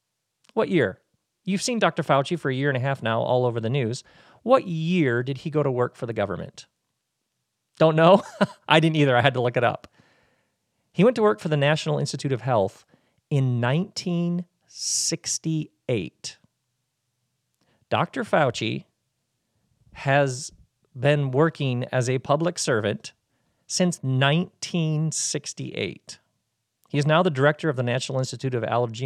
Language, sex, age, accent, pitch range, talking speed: English, male, 40-59, American, 125-160 Hz, 150 wpm